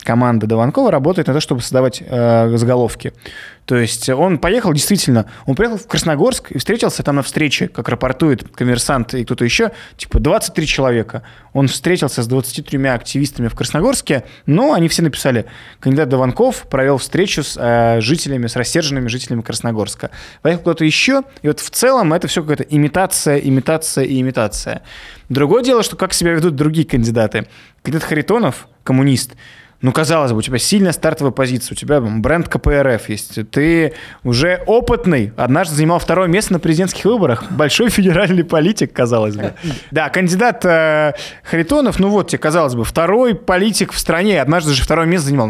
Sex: male